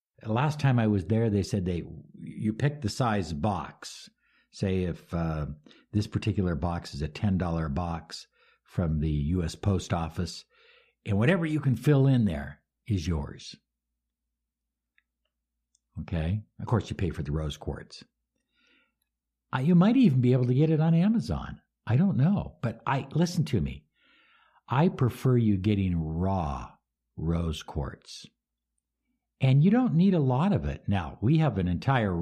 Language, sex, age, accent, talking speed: English, male, 60-79, American, 160 wpm